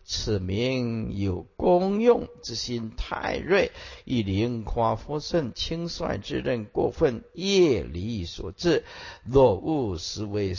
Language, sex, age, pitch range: Chinese, male, 50-69, 105-155 Hz